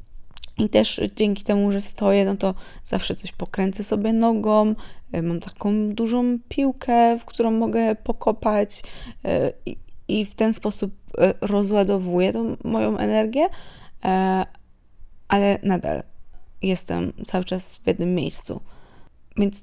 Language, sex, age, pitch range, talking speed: Polish, female, 20-39, 170-215 Hz, 115 wpm